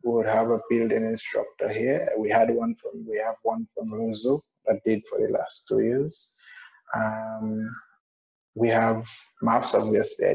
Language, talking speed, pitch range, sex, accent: English, 160 wpm, 120-150 Hz, male, Nigerian